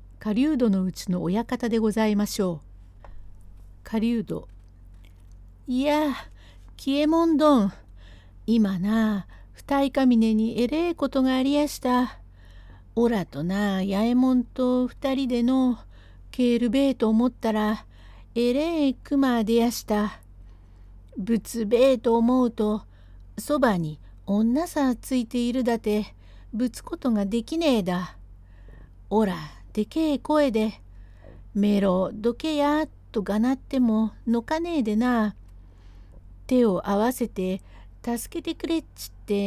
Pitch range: 165-250 Hz